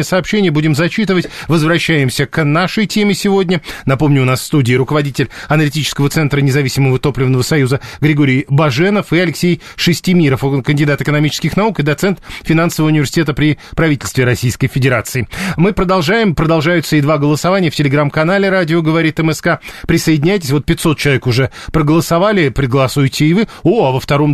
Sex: male